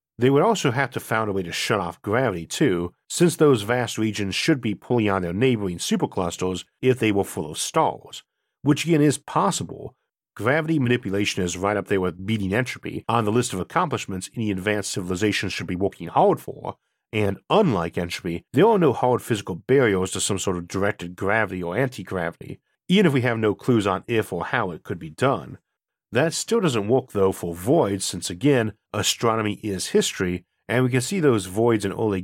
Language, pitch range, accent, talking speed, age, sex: English, 95-125 Hz, American, 200 wpm, 50-69, male